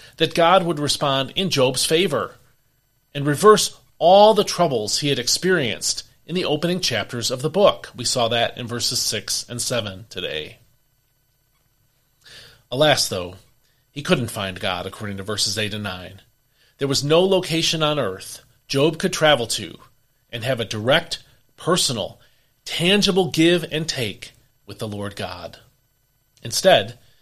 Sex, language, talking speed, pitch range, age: male, English, 150 wpm, 115-150 Hz, 40-59